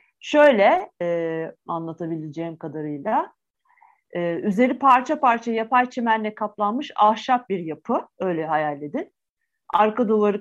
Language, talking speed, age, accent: Turkish, 110 wpm, 50-69, native